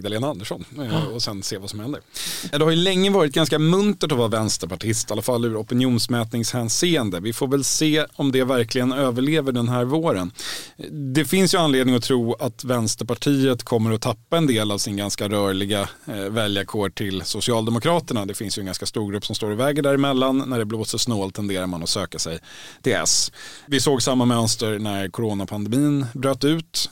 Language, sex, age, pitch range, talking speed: Swedish, male, 30-49, 110-140 Hz, 185 wpm